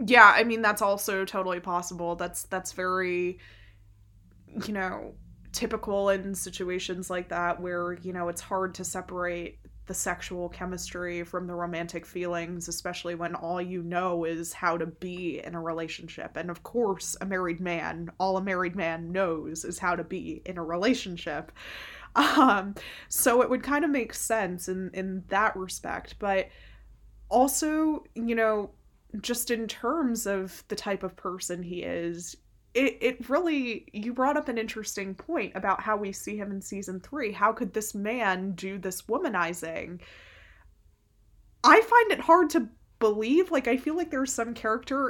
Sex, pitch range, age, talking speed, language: female, 180-240 Hz, 20-39, 165 wpm, English